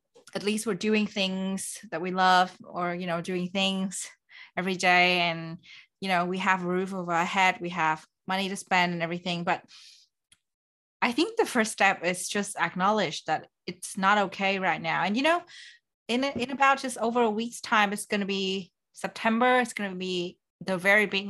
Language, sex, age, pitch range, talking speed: English, female, 20-39, 175-205 Hz, 195 wpm